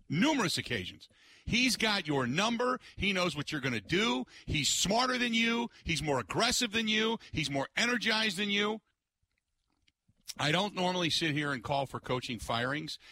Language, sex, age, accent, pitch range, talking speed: English, male, 50-69, American, 125-160 Hz, 170 wpm